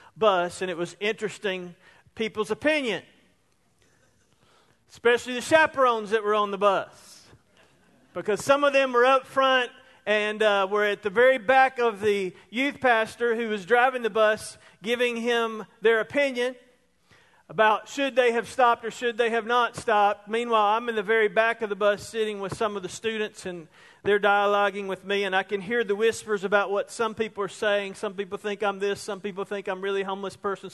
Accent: American